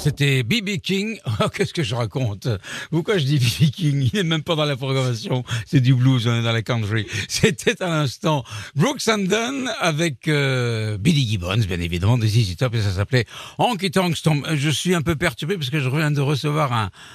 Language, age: French, 60-79